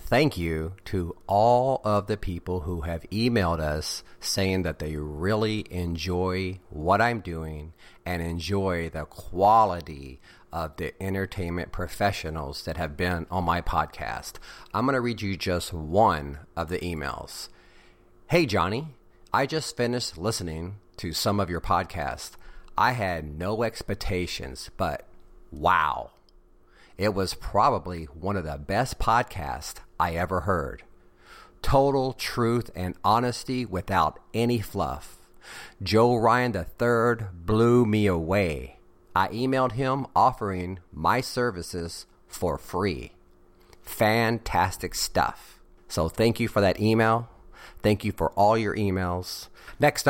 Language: English